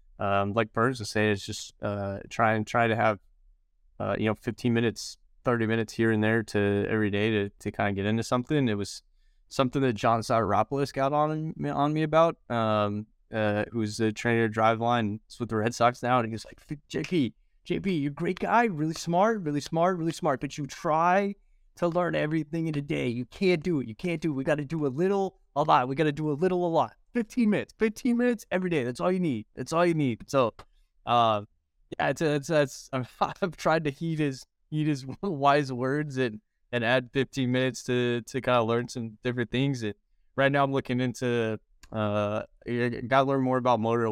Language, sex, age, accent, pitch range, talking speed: English, male, 20-39, American, 105-145 Hz, 220 wpm